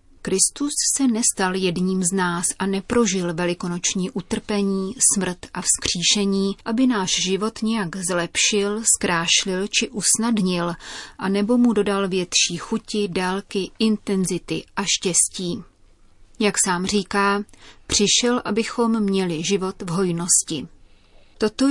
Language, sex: Czech, female